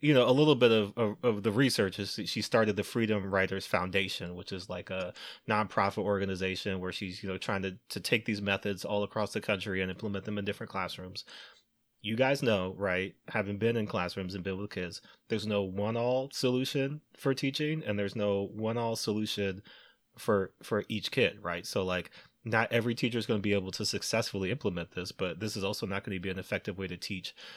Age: 20-39